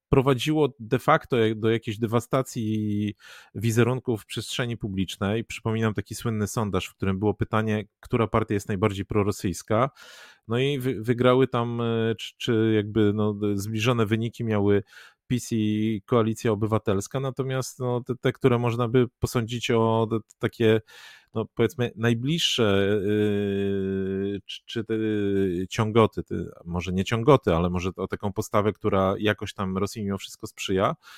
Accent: native